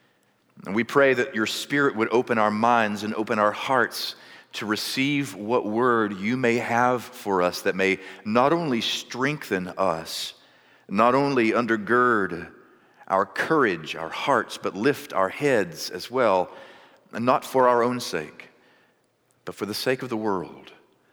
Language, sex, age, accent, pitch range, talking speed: English, male, 50-69, American, 95-125 Hz, 155 wpm